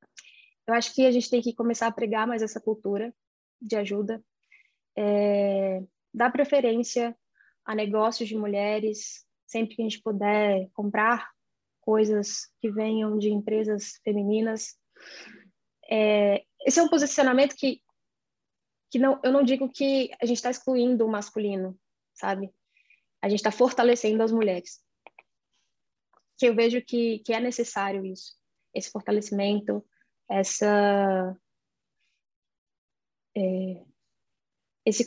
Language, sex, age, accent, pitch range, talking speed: Portuguese, female, 10-29, Brazilian, 210-240 Hz, 125 wpm